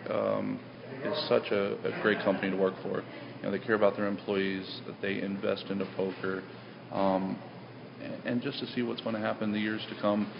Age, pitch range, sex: 40-59, 95-105 Hz, male